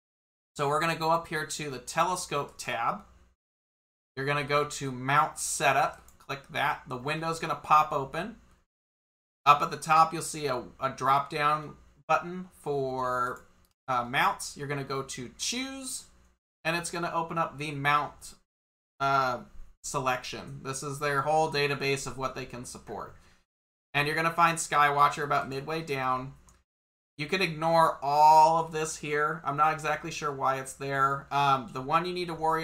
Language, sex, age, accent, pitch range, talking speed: English, male, 30-49, American, 130-155 Hz, 175 wpm